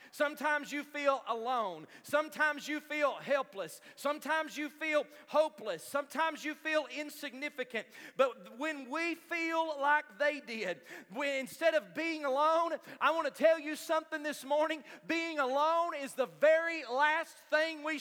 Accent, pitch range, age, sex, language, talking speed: American, 290-335 Hz, 40-59, male, English, 145 wpm